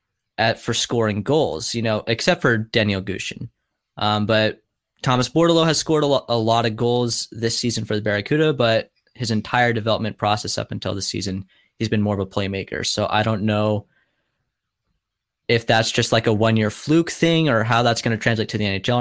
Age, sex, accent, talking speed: 20-39, male, American, 195 wpm